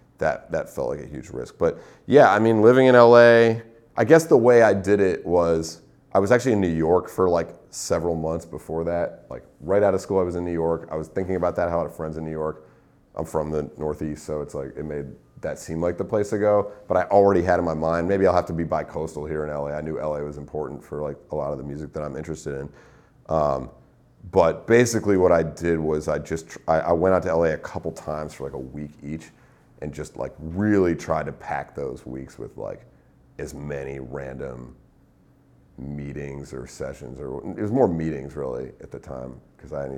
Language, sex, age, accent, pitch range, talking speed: English, male, 30-49, American, 75-95 Hz, 235 wpm